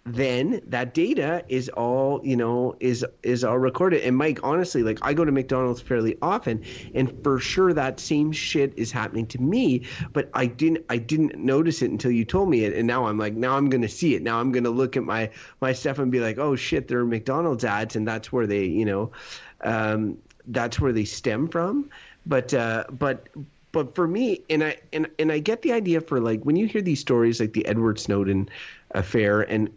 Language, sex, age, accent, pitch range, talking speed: English, male, 30-49, American, 110-135 Hz, 215 wpm